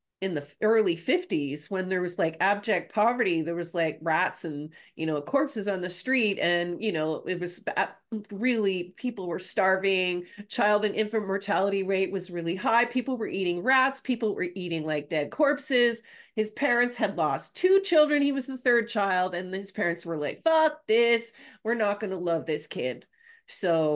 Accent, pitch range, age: American, 165-230 Hz, 30-49